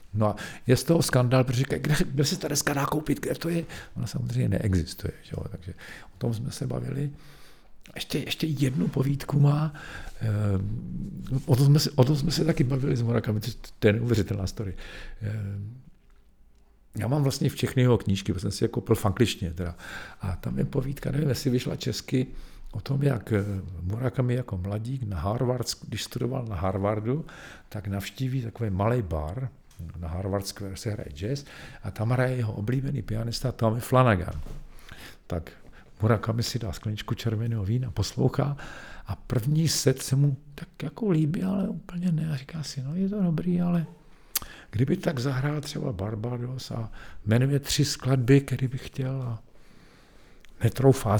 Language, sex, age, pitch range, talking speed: Czech, male, 50-69, 105-145 Hz, 165 wpm